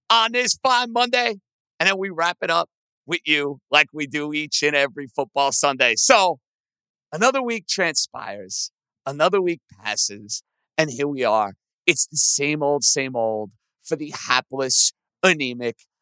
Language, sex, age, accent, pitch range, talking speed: English, male, 50-69, American, 145-225 Hz, 155 wpm